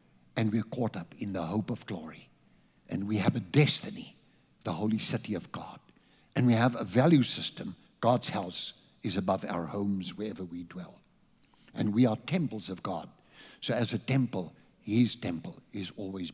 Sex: male